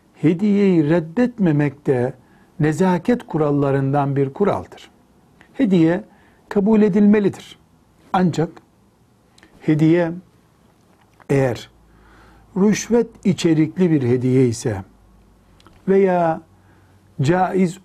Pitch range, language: 130-185 Hz, Turkish